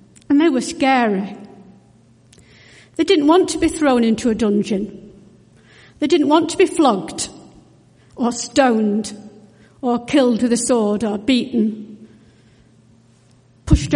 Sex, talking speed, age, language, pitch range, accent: female, 125 wpm, 60-79, English, 195-280 Hz, British